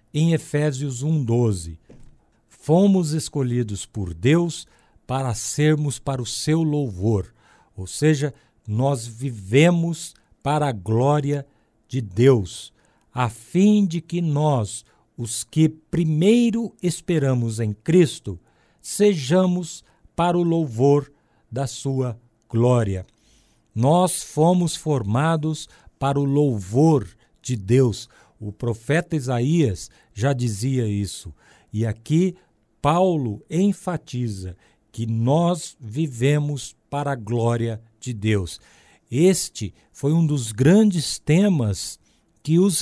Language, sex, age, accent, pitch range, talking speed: Portuguese, male, 60-79, Brazilian, 115-160 Hz, 105 wpm